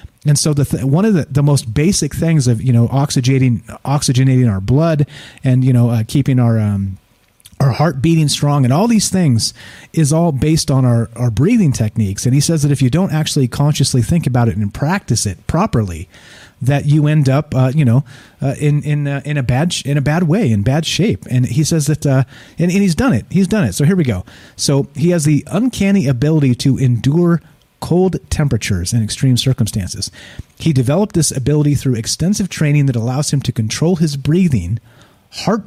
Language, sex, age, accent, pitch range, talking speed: English, male, 30-49, American, 120-155 Hz, 215 wpm